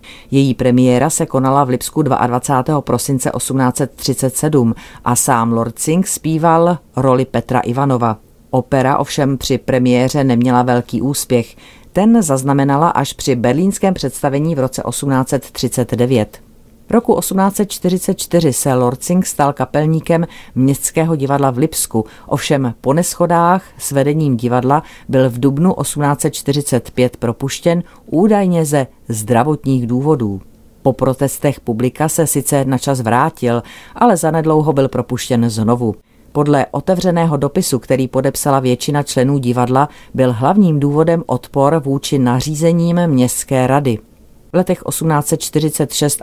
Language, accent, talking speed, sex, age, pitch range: Czech, native, 115 wpm, female, 40-59, 125-155 Hz